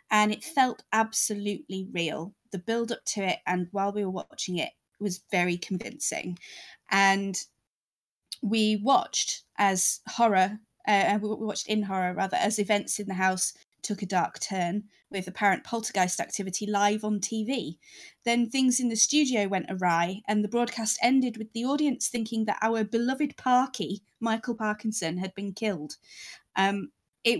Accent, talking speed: British, 160 wpm